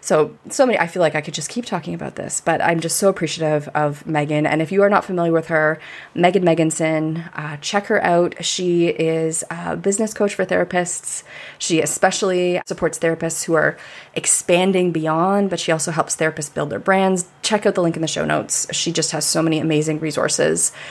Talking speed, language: 205 wpm, English